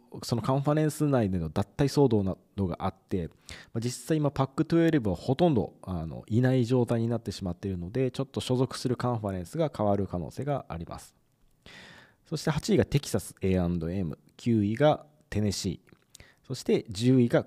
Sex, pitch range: male, 95-135 Hz